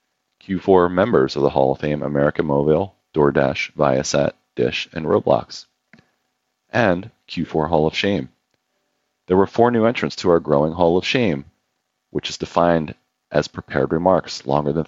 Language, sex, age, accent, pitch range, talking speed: English, male, 40-59, American, 75-95 Hz, 155 wpm